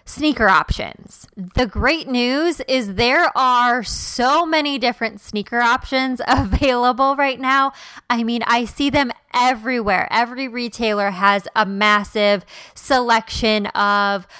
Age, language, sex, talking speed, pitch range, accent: 20-39, English, female, 120 wpm, 220-275 Hz, American